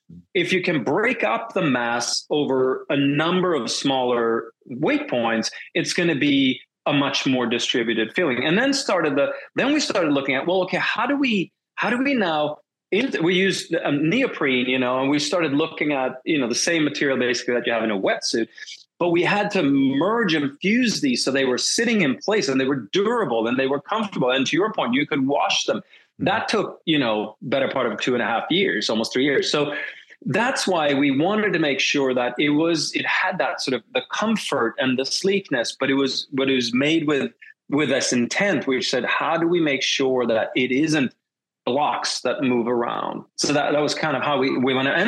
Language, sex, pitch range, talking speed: English, male, 130-185 Hz, 220 wpm